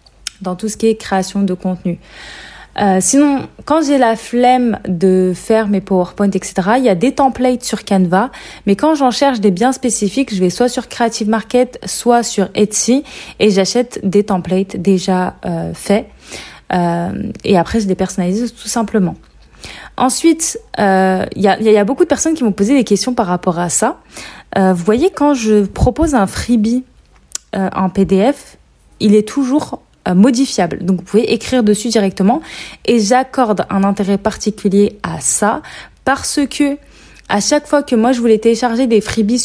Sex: female